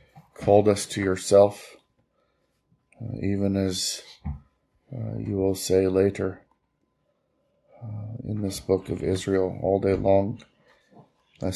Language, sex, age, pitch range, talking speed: English, male, 40-59, 95-100 Hz, 115 wpm